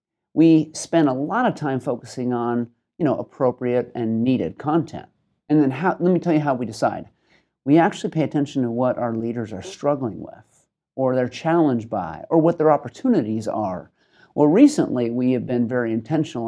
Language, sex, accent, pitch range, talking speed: English, male, American, 125-150 Hz, 180 wpm